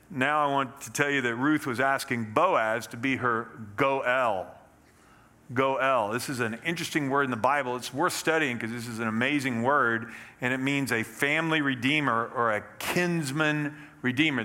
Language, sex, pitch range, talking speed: English, male, 120-150 Hz, 180 wpm